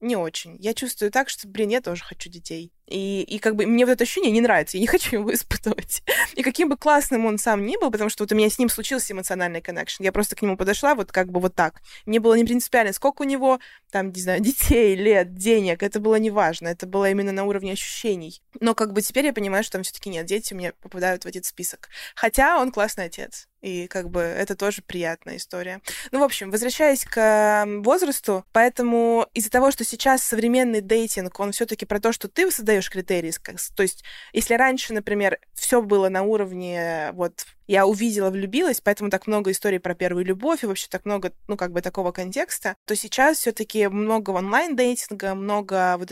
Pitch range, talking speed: 190-235 Hz, 210 wpm